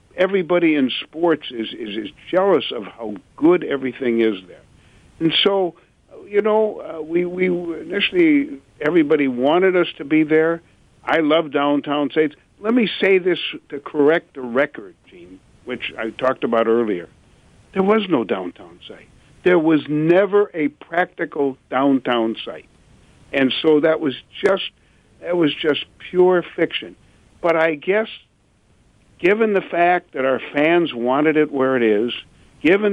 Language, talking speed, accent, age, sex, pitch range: English, 150 wpm, American, 60-79, male, 130-180 Hz